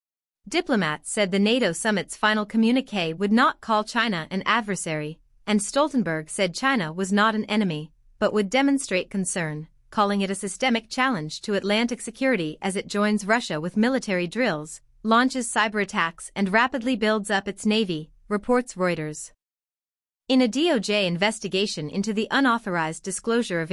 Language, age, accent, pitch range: English, 30-49, American, 180-235 Hz